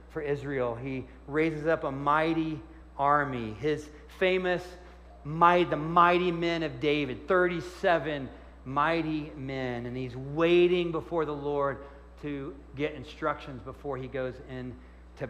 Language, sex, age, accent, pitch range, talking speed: English, male, 40-59, American, 105-165 Hz, 125 wpm